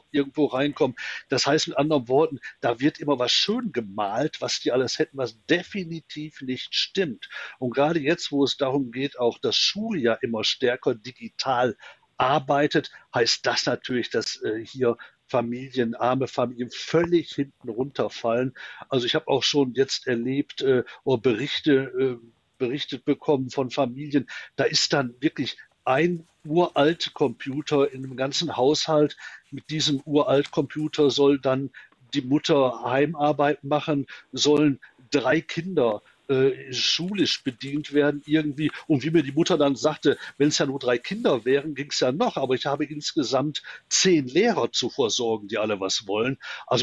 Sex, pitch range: male, 125-155 Hz